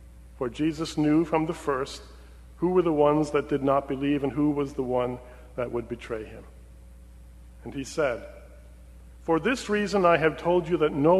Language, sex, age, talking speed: English, male, 40-59, 190 wpm